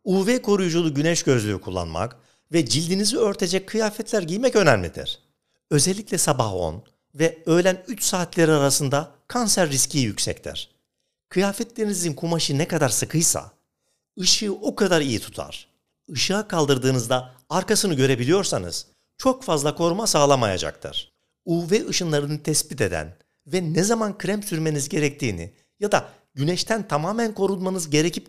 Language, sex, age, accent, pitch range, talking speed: Turkish, male, 60-79, native, 130-190 Hz, 120 wpm